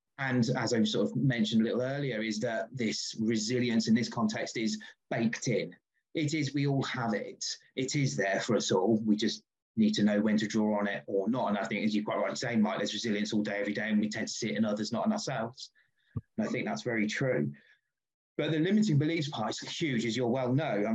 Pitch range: 115-140 Hz